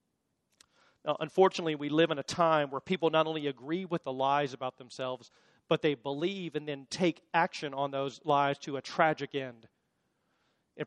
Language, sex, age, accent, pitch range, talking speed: English, male, 40-59, American, 145-195 Hz, 170 wpm